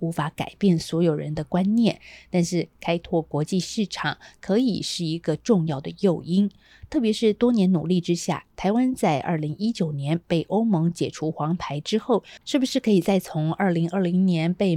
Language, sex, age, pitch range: Chinese, female, 30-49, 150-195 Hz